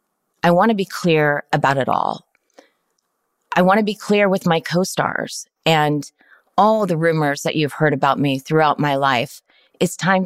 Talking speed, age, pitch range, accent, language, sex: 175 wpm, 30-49, 140-165 Hz, American, English, female